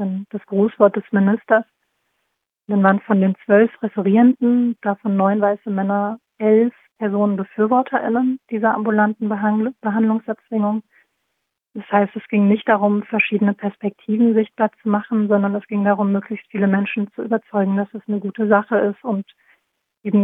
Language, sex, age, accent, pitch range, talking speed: German, female, 40-59, German, 200-225 Hz, 140 wpm